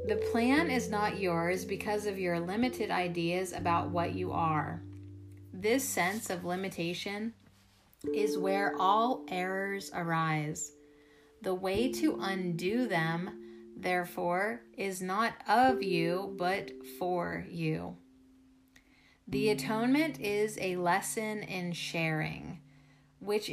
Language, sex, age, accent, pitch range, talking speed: English, female, 30-49, American, 150-210 Hz, 110 wpm